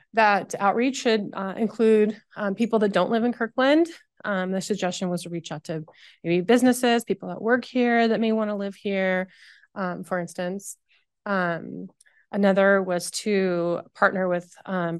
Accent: American